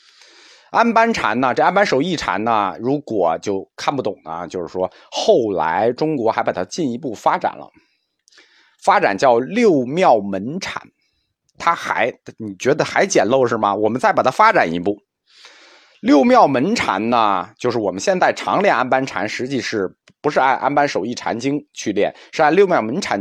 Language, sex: Chinese, male